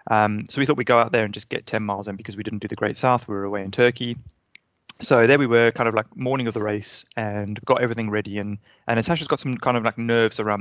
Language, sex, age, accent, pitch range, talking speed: English, male, 20-39, British, 105-120 Hz, 290 wpm